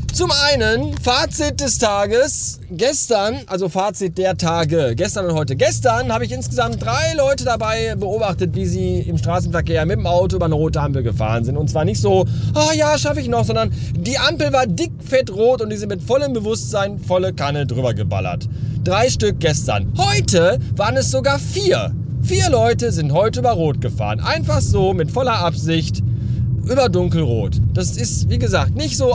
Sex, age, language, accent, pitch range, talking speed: male, 30-49, German, German, 110-165 Hz, 180 wpm